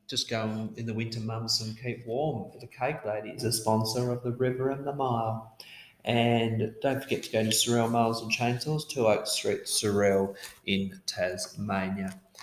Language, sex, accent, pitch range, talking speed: English, male, Australian, 100-120 Hz, 180 wpm